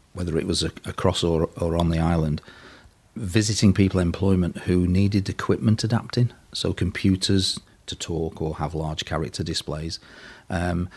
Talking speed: 150 wpm